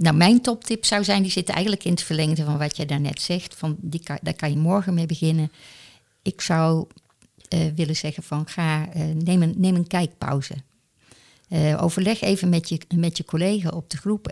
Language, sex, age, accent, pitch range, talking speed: Dutch, female, 50-69, Dutch, 155-185 Hz, 205 wpm